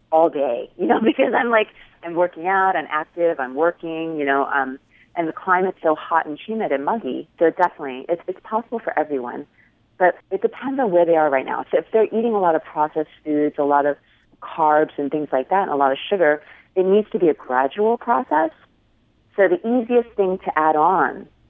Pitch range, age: 150-195 Hz, 30-49